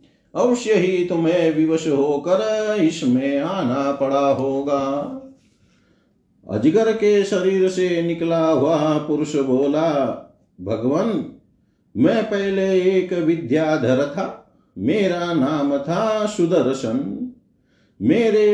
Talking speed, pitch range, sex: 95 wpm, 150-190 Hz, male